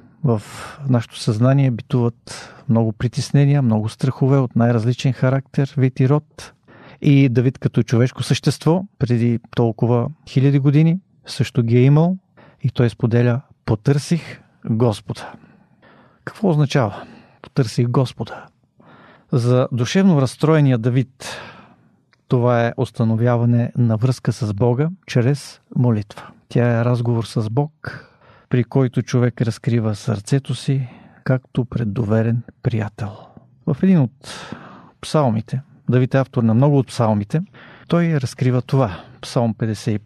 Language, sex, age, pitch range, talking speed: Bulgarian, male, 40-59, 120-145 Hz, 115 wpm